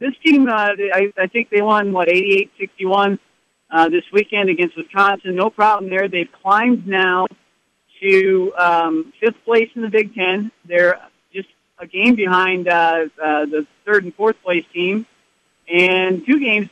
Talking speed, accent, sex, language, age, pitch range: 150 wpm, American, male, English, 60-79, 175-220 Hz